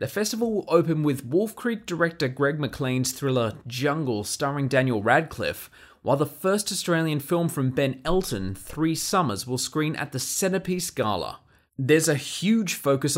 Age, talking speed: 20-39, 160 wpm